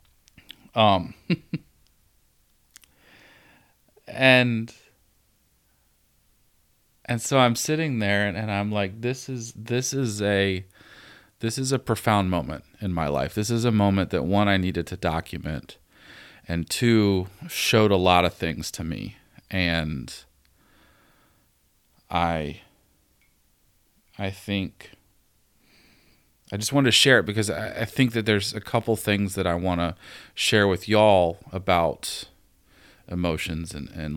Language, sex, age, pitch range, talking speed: English, male, 40-59, 80-105 Hz, 130 wpm